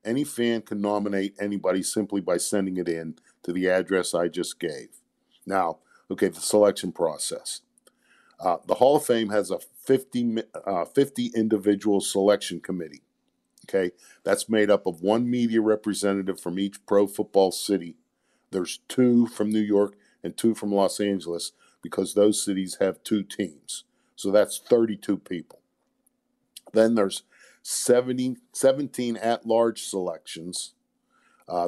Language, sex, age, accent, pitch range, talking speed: English, male, 50-69, American, 95-110 Hz, 135 wpm